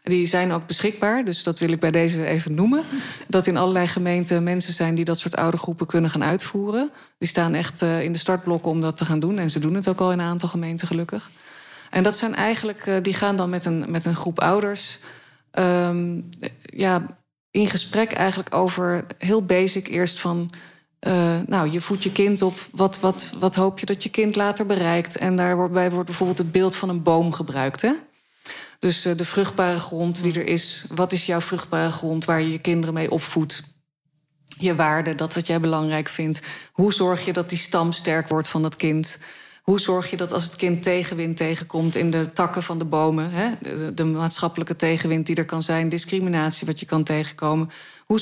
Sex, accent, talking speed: female, Dutch, 205 wpm